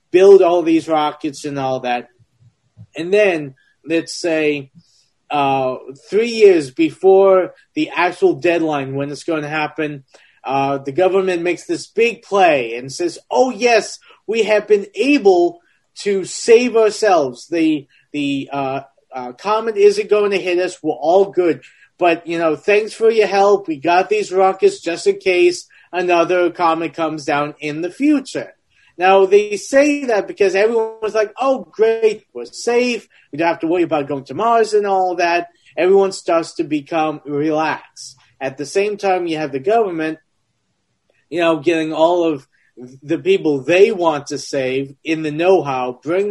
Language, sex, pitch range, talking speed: English, male, 150-200 Hz, 165 wpm